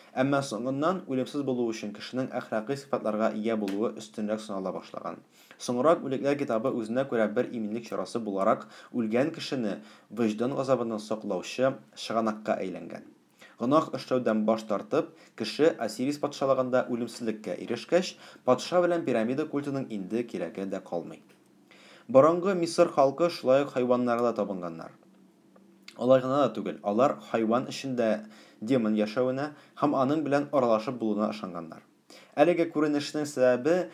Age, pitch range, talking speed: 30-49, 110-140 Hz, 90 wpm